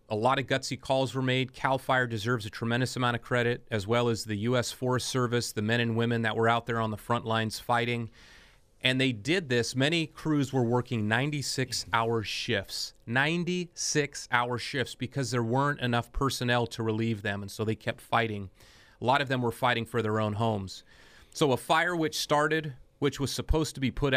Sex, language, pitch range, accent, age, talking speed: male, English, 115-135 Hz, American, 30-49, 205 wpm